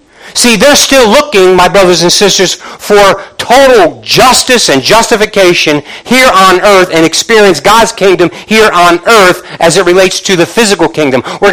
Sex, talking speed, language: male, 160 wpm, English